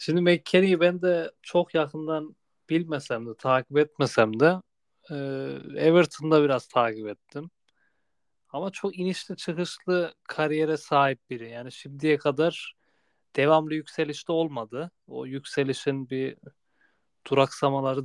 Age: 30-49